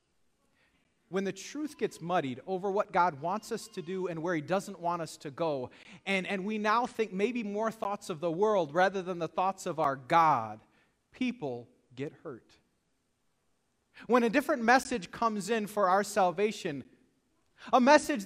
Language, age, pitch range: English, 30-49, 165-240 Hz